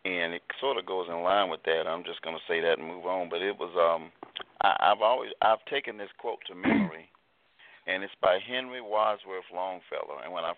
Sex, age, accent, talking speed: male, 40-59, American, 220 wpm